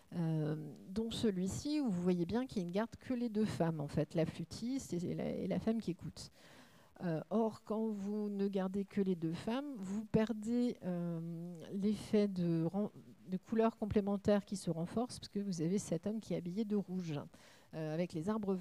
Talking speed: 195 wpm